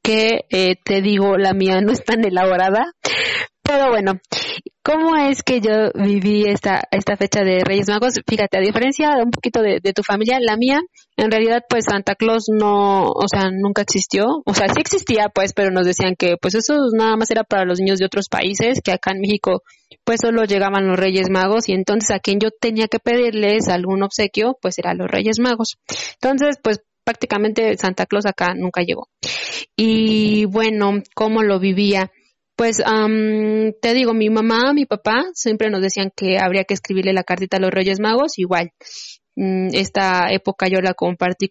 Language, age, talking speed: Spanish, 20-39, 190 wpm